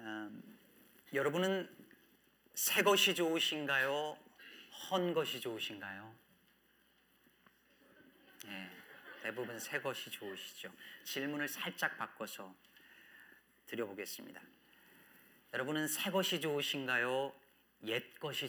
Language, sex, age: Korean, male, 40-59